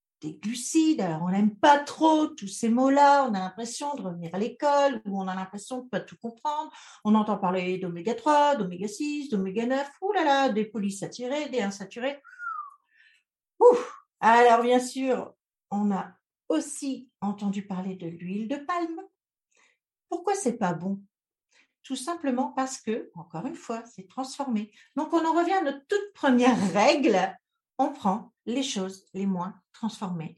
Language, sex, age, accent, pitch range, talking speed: French, female, 50-69, French, 195-280 Hz, 160 wpm